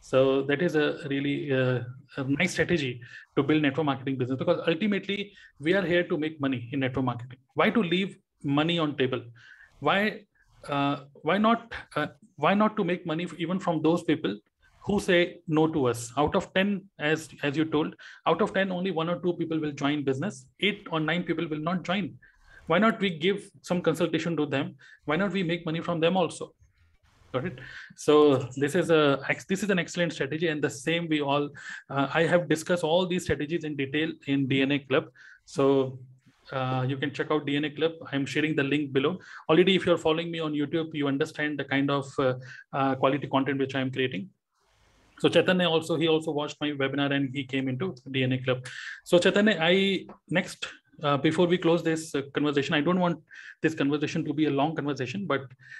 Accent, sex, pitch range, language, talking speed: native, male, 140-175 Hz, Hindi, 205 wpm